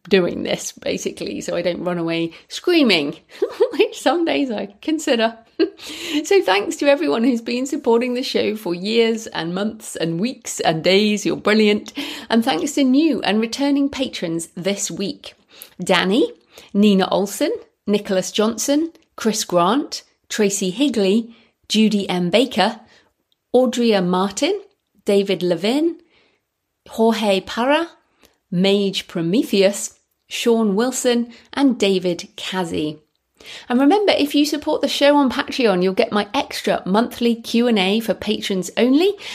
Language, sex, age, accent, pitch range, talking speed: English, female, 30-49, British, 190-265 Hz, 130 wpm